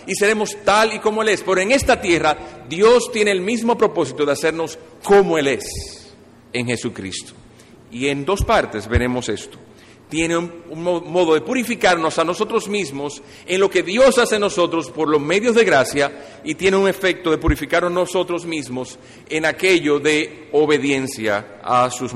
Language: Spanish